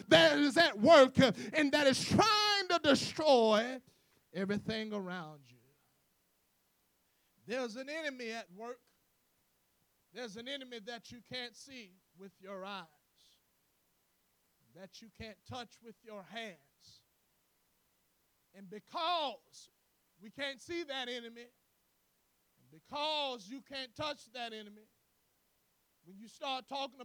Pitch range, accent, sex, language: 220-290 Hz, American, male, English